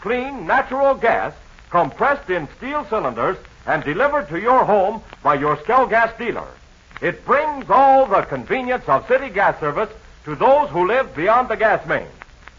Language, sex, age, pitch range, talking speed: English, male, 60-79, 210-275 Hz, 160 wpm